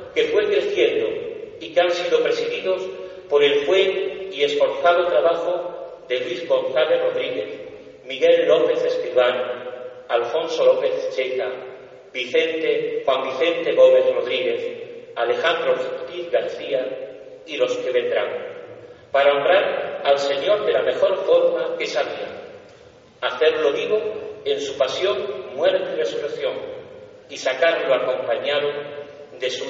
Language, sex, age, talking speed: Spanish, male, 40-59, 120 wpm